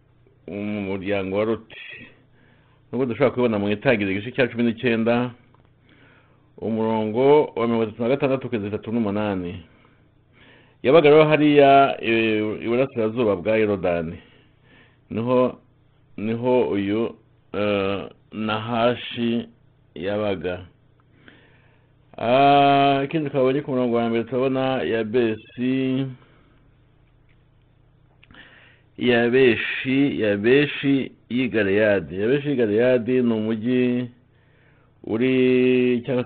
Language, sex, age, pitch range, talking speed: English, male, 60-79, 105-130 Hz, 70 wpm